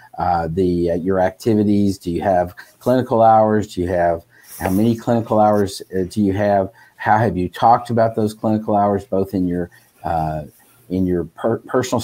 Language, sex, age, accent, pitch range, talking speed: English, male, 50-69, American, 95-110 Hz, 180 wpm